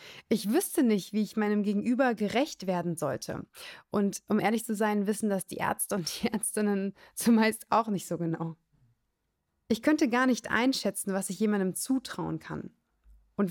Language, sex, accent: German, female, German